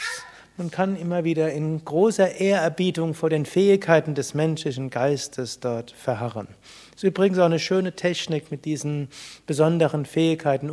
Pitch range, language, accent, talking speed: 135-170 Hz, German, German, 145 wpm